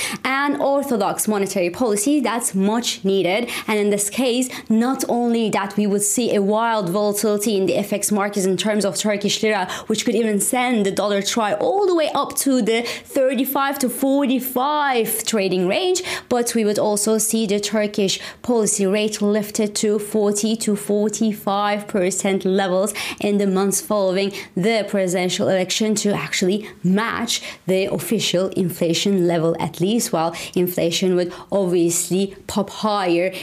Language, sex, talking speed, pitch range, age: English, female, 155 wpm, 190-235 Hz, 20-39